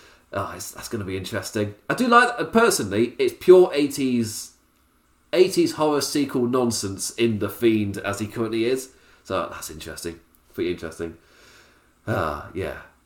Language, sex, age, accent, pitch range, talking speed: English, male, 30-49, British, 105-165 Hz, 155 wpm